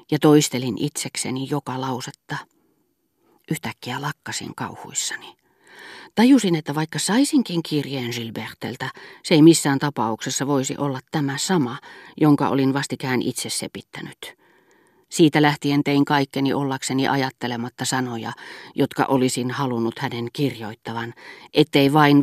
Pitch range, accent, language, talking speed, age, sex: 125-160 Hz, native, Finnish, 110 wpm, 40-59, female